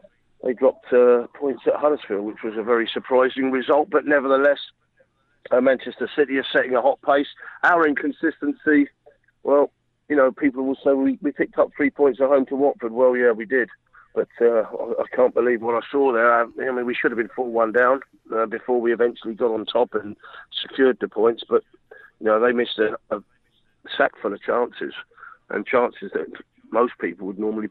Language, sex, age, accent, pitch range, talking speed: English, male, 40-59, British, 115-150 Hz, 200 wpm